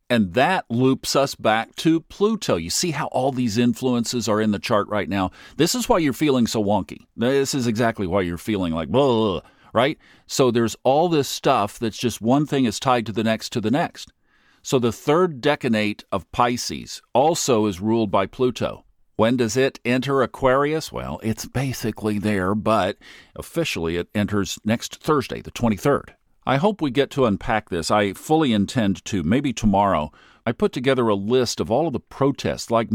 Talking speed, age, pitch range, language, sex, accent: 190 wpm, 50-69, 105-135 Hz, English, male, American